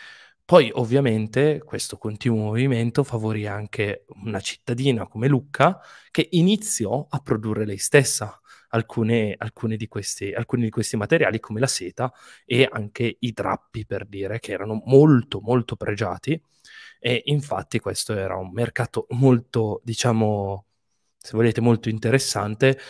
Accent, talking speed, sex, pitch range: native, 135 wpm, male, 105-130 Hz